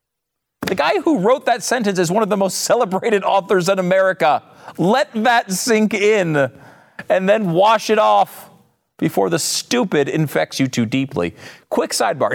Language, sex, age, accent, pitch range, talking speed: English, male, 40-59, American, 115-180 Hz, 160 wpm